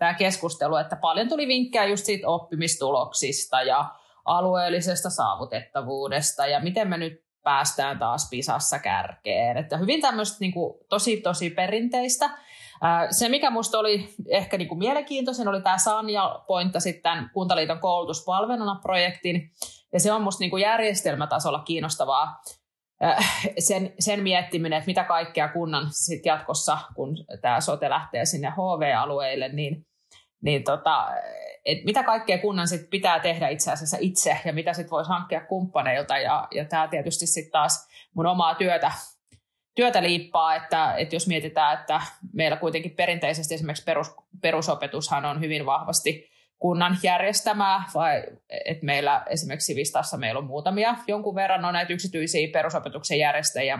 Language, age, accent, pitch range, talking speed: Finnish, 30-49, native, 155-195 Hz, 140 wpm